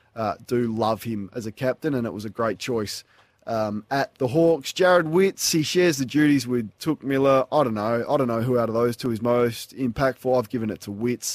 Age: 20-39